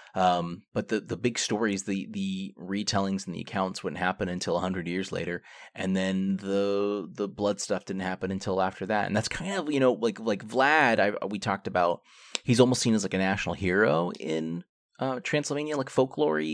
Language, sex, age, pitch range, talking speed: English, male, 30-49, 95-120 Hz, 205 wpm